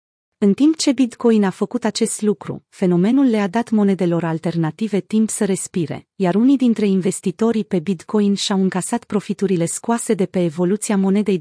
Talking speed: 160 wpm